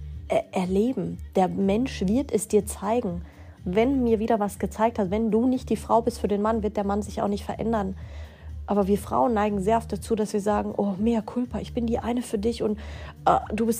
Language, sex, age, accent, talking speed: German, female, 30-49, German, 225 wpm